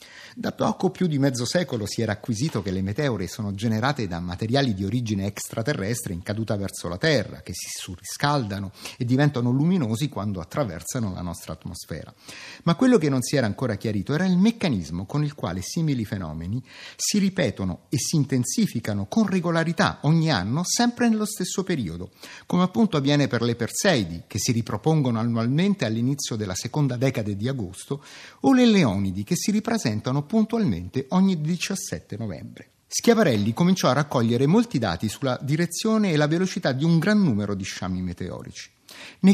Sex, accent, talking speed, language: male, native, 165 wpm, Italian